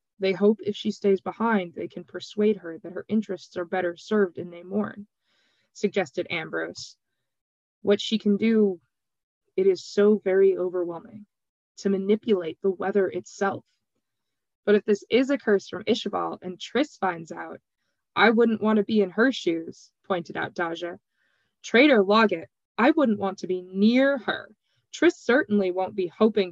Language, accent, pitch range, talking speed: English, American, 185-225 Hz, 165 wpm